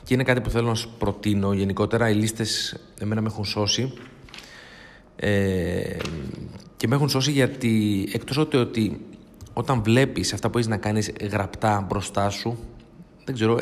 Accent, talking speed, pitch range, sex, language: native, 155 wpm, 100-125 Hz, male, Greek